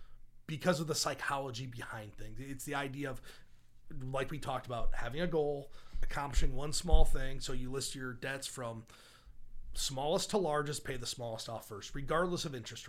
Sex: male